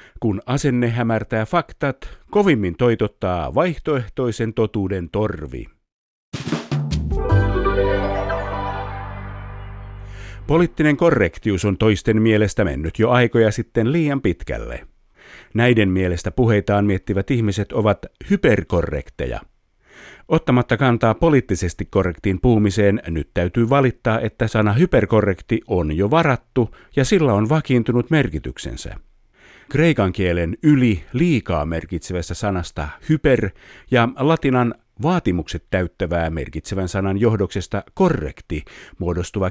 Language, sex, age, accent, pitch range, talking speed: Finnish, male, 50-69, native, 95-125 Hz, 95 wpm